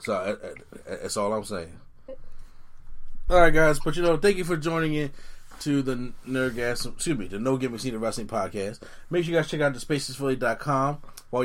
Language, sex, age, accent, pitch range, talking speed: English, male, 20-39, American, 110-140 Hz, 200 wpm